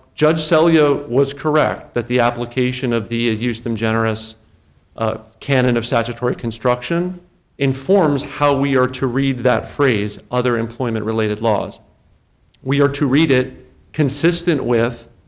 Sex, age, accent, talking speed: male, 40-59, American, 135 wpm